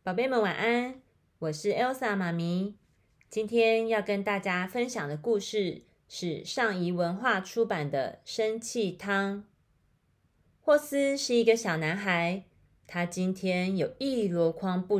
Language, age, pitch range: Chinese, 30-49, 170-225 Hz